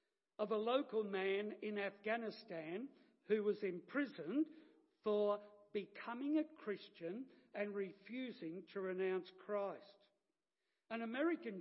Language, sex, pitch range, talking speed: English, male, 200-245 Hz, 105 wpm